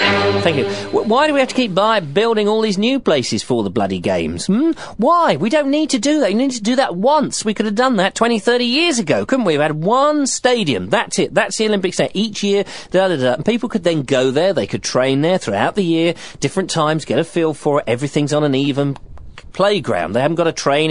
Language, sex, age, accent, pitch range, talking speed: English, male, 40-59, British, 145-205 Hz, 245 wpm